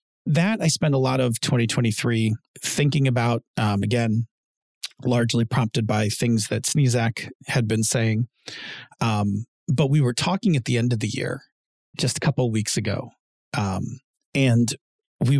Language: English